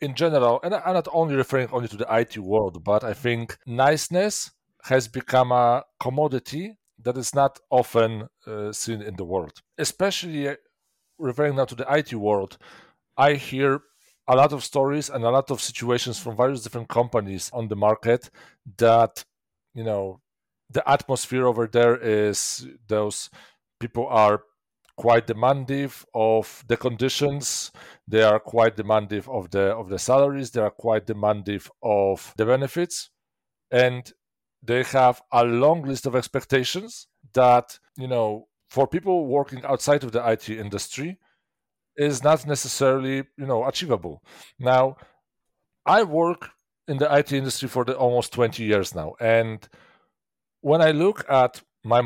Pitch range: 115-140 Hz